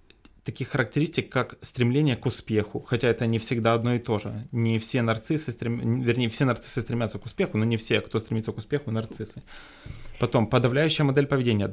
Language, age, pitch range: Ukrainian, 20-39, 110-140 Hz